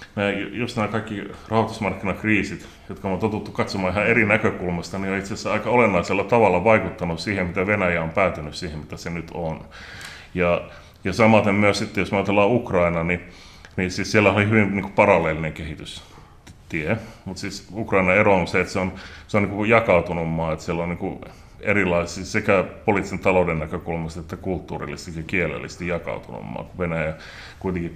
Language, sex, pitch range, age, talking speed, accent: Finnish, male, 85-100 Hz, 30-49, 170 wpm, native